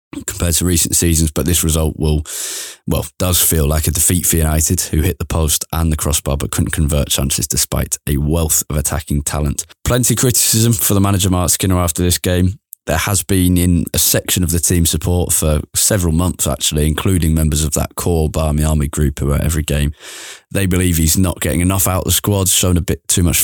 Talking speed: 220 wpm